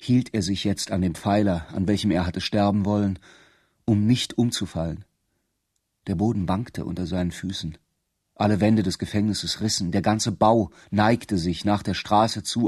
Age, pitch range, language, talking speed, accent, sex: 40-59, 95-110 Hz, German, 170 wpm, German, male